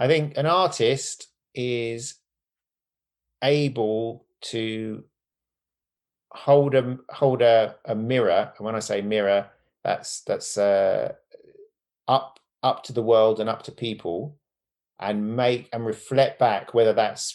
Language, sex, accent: English, male, British